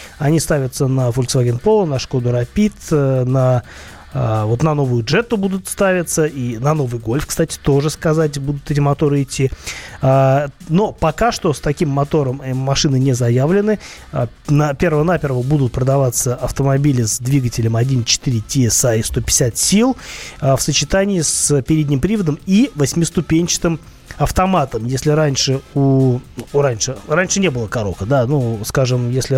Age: 20-39